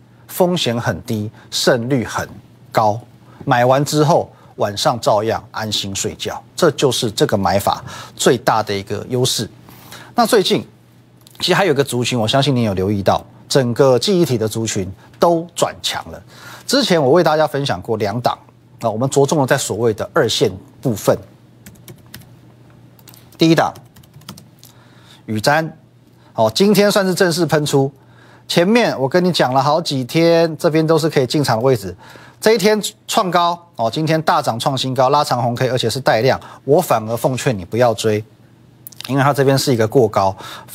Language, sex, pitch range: Chinese, male, 115-155 Hz